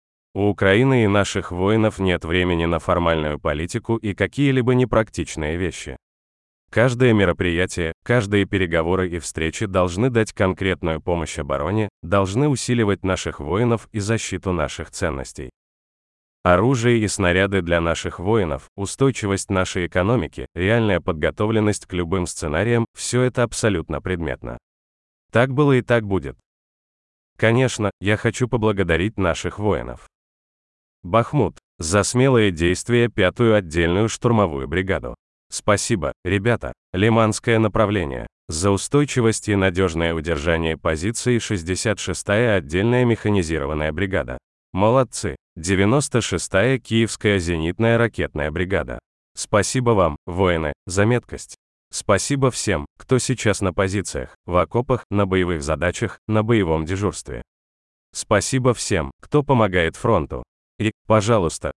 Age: 30-49